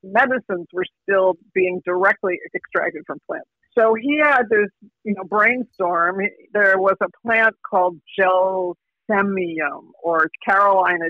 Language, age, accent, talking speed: English, 50-69, American, 125 wpm